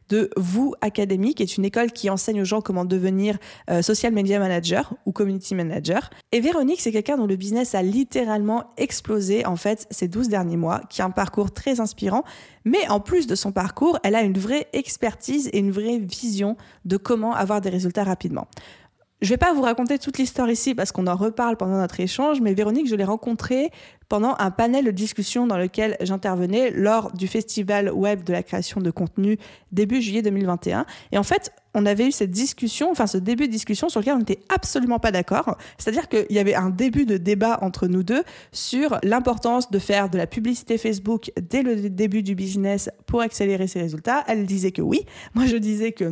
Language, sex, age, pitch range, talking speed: French, female, 20-39, 195-245 Hz, 205 wpm